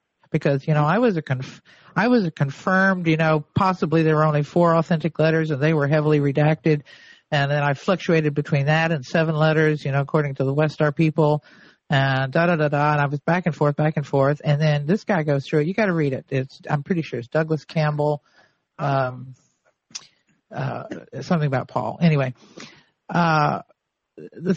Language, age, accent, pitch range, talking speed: English, 50-69, American, 150-185 Hz, 200 wpm